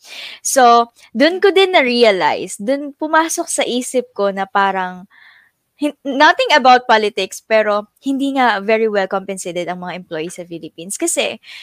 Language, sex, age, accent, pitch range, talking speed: Filipino, female, 20-39, native, 195-270 Hz, 140 wpm